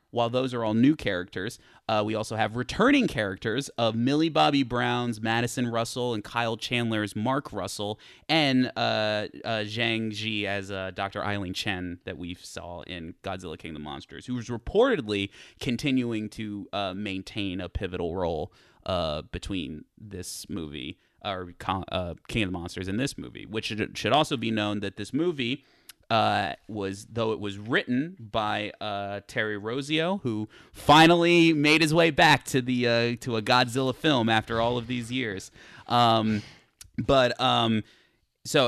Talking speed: 160 wpm